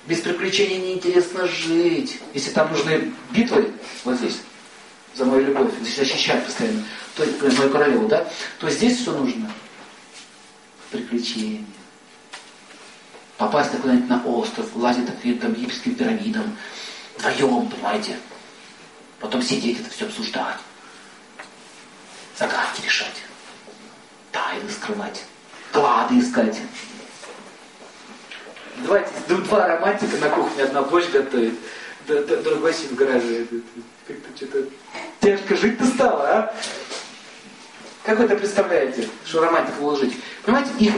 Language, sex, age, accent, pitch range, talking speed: Russian, male, 40-59, native, 180-255 Hz, 105 wpm